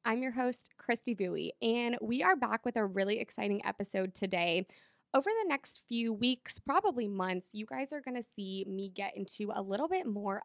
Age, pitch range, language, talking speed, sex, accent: 20-39, 200-265 Hz, English, 200 wpm, female, American